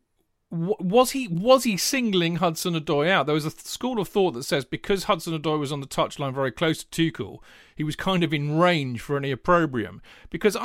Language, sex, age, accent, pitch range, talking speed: English, male, 40-59, British, 130-180 Hz, 205 wpm